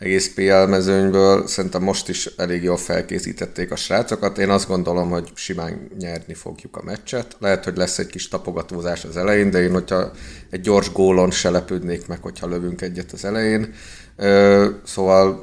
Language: Hungarian